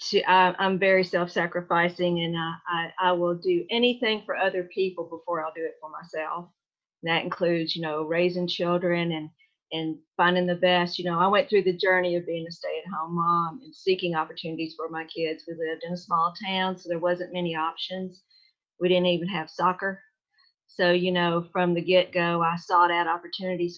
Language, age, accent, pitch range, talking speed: English, 50-69, American, 170-190 Hz, 185 wpm